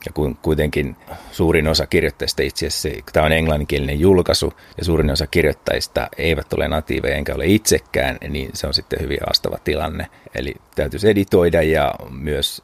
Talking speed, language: 155 wpm, Finnish